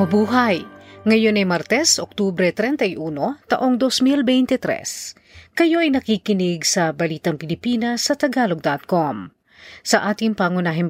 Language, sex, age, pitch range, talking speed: Filipino, female, 40-59, 170-235 Hz, 105 wpm